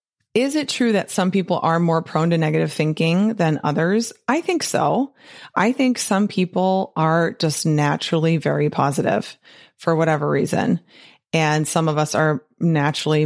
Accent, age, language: American, 30-49, English